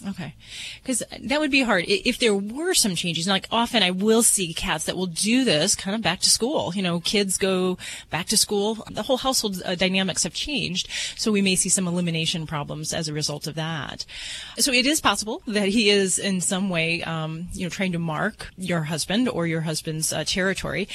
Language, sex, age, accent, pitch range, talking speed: English, female, 30-49, American, 170-210 Hz, 210 wpm